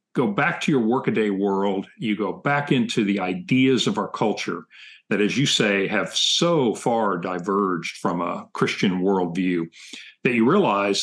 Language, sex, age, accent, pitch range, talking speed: English, male, 50-69, American, 100-130 Hz, 165 wpm